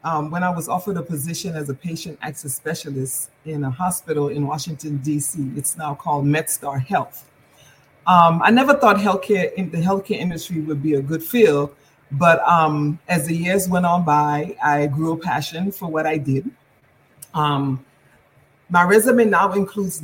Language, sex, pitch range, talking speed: English, female, 145-175 Hz, 175 wpm